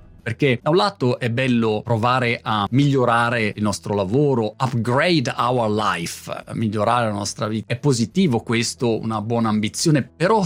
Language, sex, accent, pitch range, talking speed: Italian, male, native, 115-150 Hz, 150 wpm